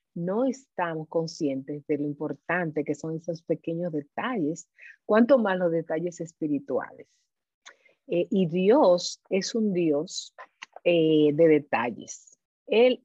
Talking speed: 120 wpm